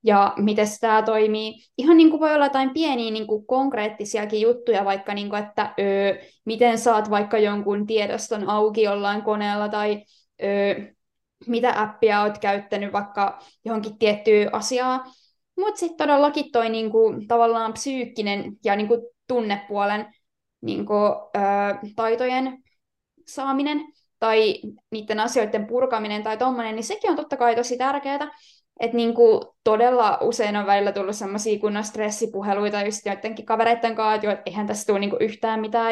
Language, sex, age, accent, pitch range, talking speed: Finnish, female, 20-39, native, 215-255 Hz, 145 wpm